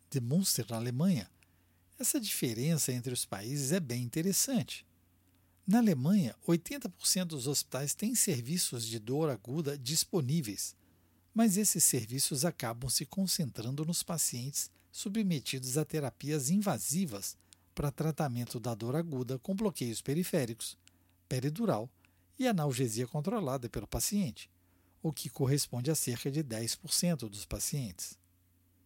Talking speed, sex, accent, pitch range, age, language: 120 wpm, male, Brazilian, 110-170 Hz, 60-79, Portuguese